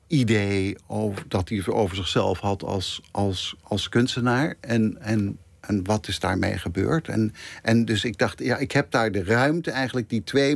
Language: Dutch